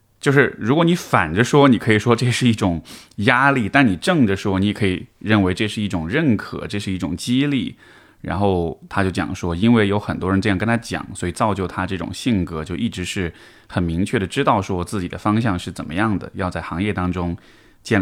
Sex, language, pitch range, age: male, Chinese, 90-115 Hz, 20-39